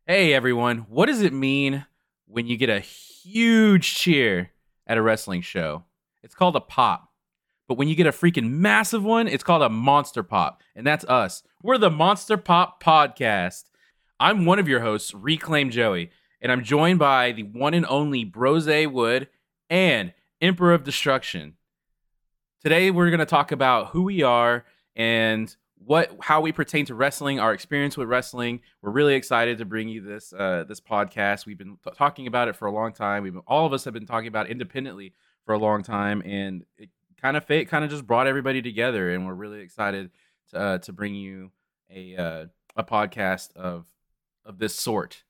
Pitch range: 110-155 Hz